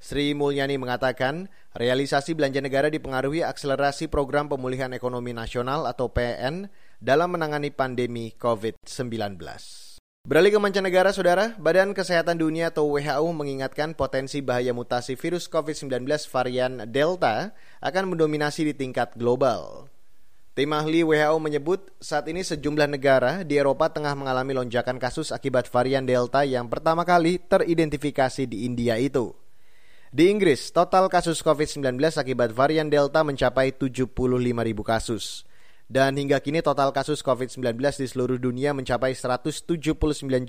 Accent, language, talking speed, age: native, Indonesian, 125 wpm, 20-39